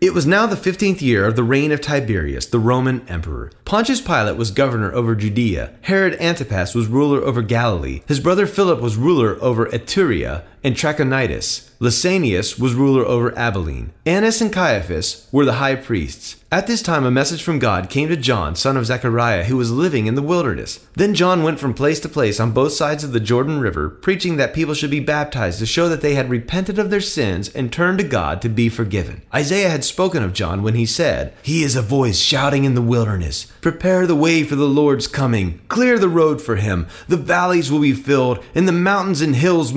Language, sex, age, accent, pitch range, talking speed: English, male, 30-49, American, 115-160 Hz, 210 wpm